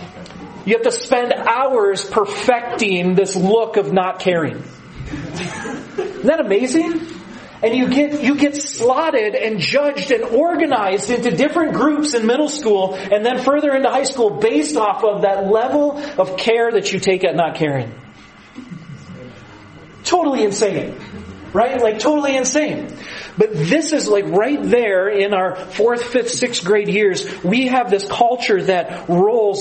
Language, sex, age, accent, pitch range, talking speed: English, male, 40-59, American, 190-250 Hz, 150 wpm